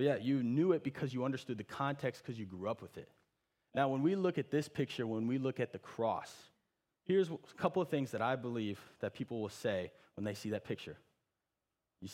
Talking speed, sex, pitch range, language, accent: 230 wpm, male, 115-145 Hz, English, American